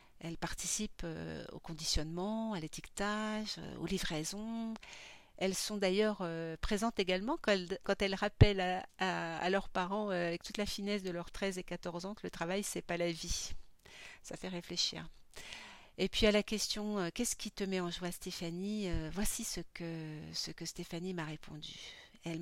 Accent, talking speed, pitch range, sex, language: French, 175 wpm, 165-200 Hz, female, French